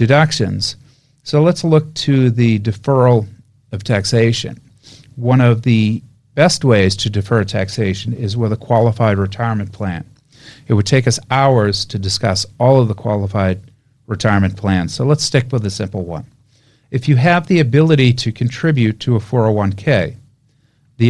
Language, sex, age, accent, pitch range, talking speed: English, male, 40-59, American, 110-135 Hz, 155 wpm